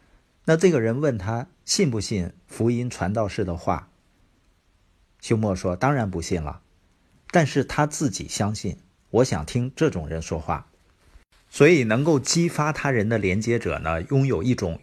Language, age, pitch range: Chinese, 50-69, 95-140 Hz